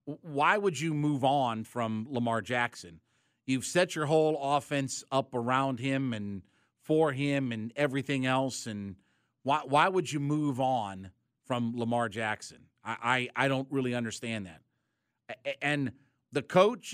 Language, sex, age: English, male, 50-69